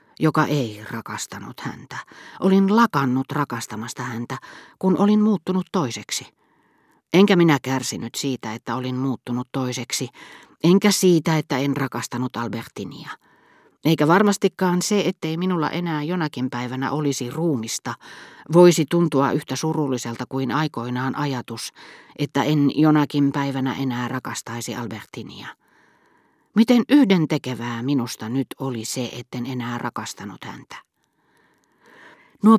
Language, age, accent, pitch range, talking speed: Finnish, 40-59, native, 125-165 Hz, 110 wpm